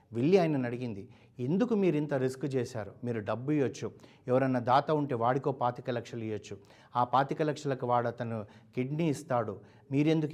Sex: male